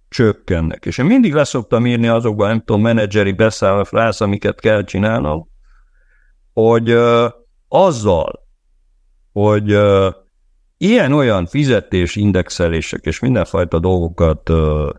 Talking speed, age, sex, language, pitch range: 90 wpm, 60-79, male, Hungarian, 90-115 Hz